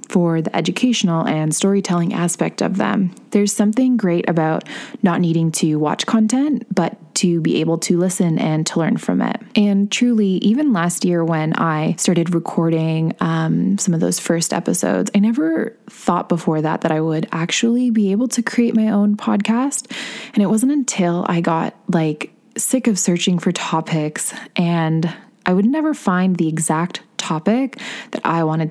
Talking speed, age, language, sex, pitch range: 170 wpm, 20-39, English, female, 165-215 Hz